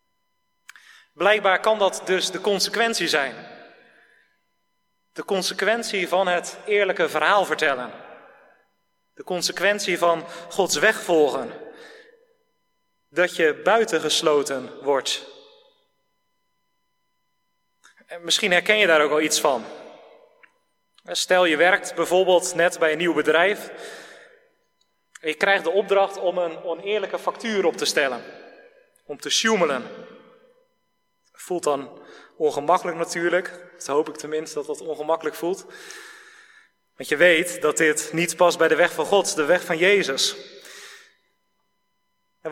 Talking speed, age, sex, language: 120 wpm, 30-49, male, Dutch